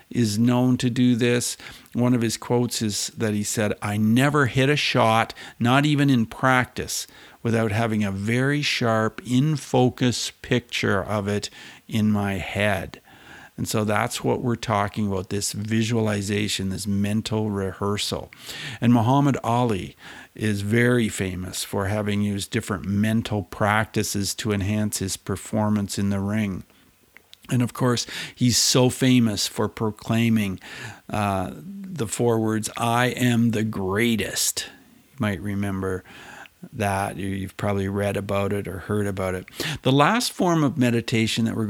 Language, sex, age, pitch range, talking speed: English, male, 50-69, 105-125 Hz, 145 wpm